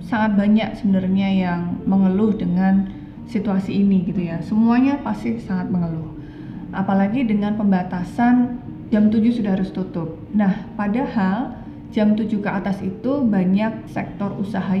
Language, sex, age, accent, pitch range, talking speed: Indonesian, female, 20-39, native, 190-230 Hz, 130 wpm